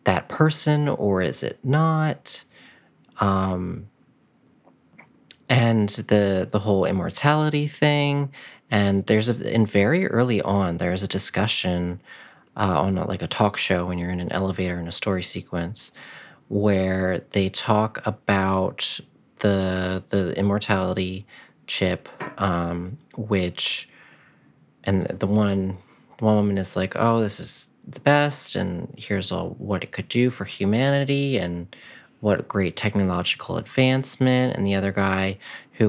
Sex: male